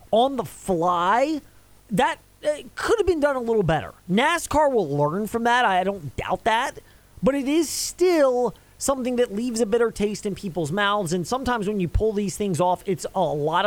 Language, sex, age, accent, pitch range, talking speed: English, male, 30-49, American, 165-225 Hz, 195 wpm